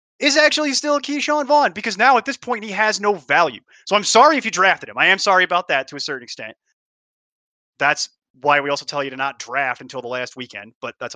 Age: 20-39